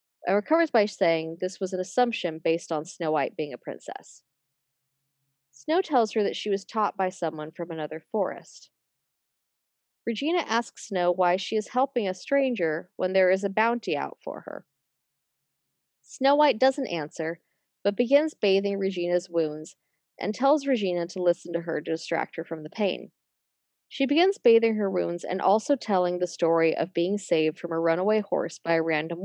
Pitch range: 165-230 Hz